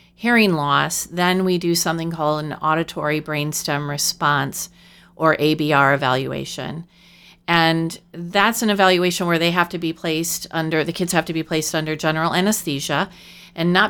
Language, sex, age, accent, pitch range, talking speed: English, female, 40-59, American, 160-185 Hz, 155 wpm